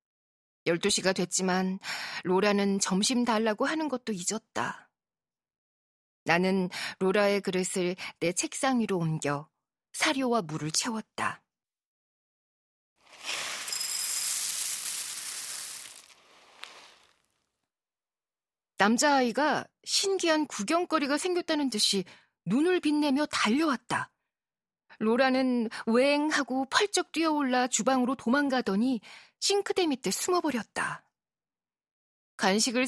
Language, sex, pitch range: Korean, female, 195-265 Hz